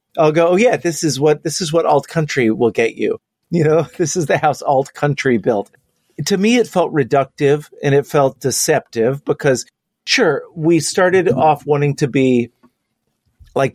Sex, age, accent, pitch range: male, 40-59, American, 125-150 Hz